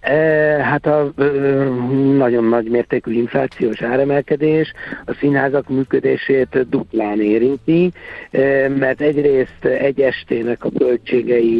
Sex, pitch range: male, 115-140 Hz